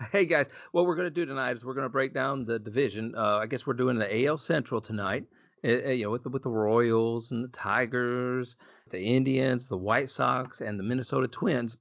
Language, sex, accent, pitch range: English, male, American, 115-135 Hz